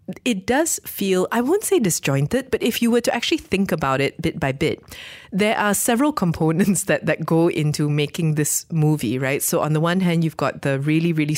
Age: 20-39